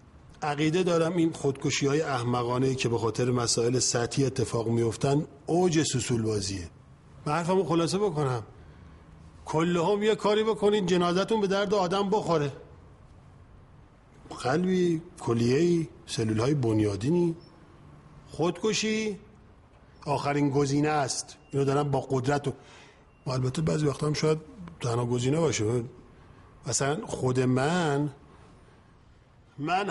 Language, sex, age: Persian, male, 50-69